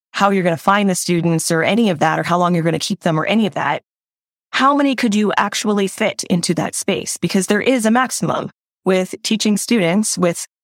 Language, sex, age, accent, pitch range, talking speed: English, female, 20-39, American, 165-200 Hz, 220 wpm